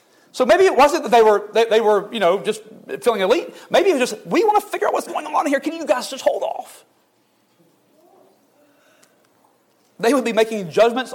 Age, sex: 40-59, male